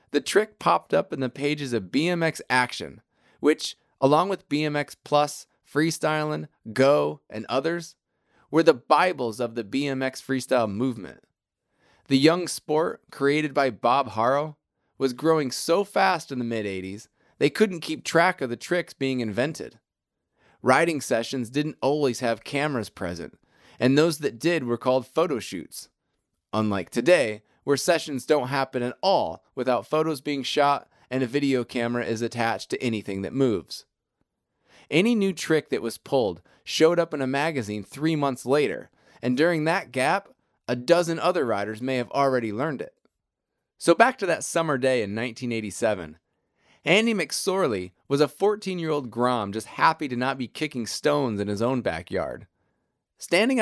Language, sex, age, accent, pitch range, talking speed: English, male, 20-39, American, 120-155 Hz, 155 wpm